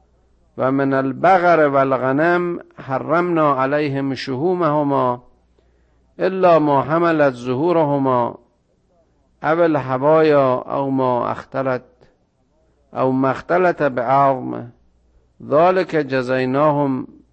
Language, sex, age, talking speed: Persian, male, 50-69, 75 wpm